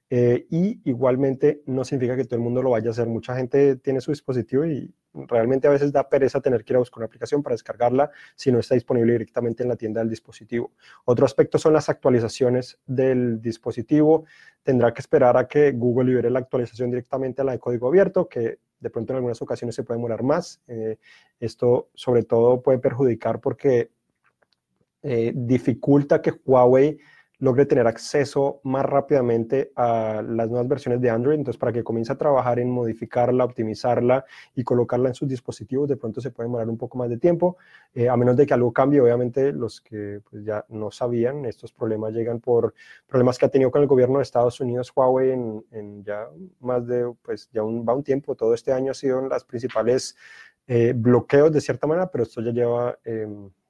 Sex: male